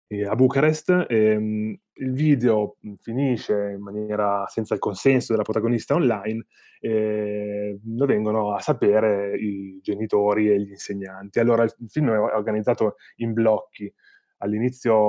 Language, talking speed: Italian, 130 wpm